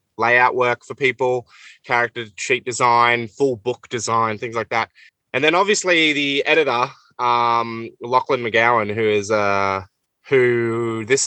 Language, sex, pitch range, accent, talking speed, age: English, male, 115-145 Hz, Australian, 140 wpm, 20-39